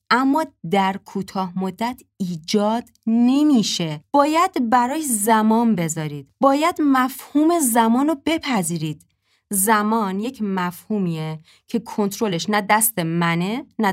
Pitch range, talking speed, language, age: 180-245 Hz, 105 wpm, Persian, 20-39